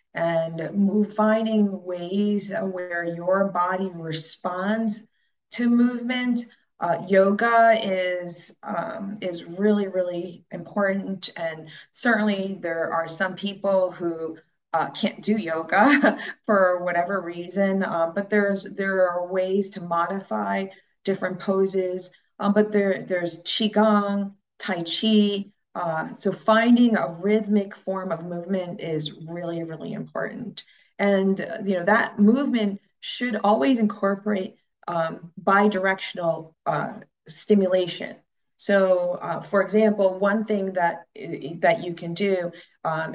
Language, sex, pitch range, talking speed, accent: English, female, 170-205 Hz, 120 wpm, American